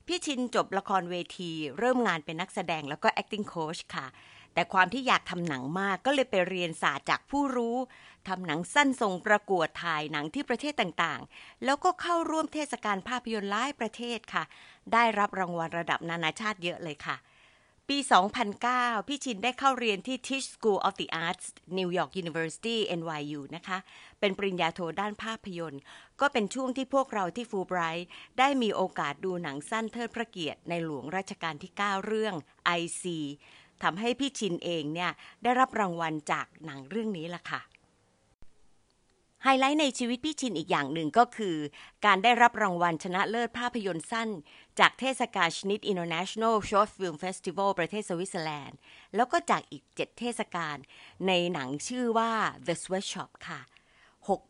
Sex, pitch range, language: female, 170-235 Hz, Thai